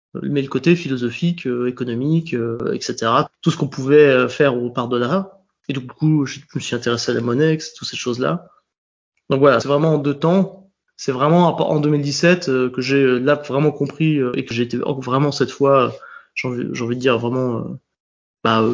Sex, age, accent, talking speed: male, 20-39, French, 175 wpm